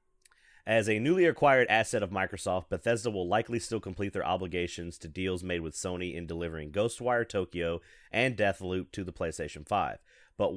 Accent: American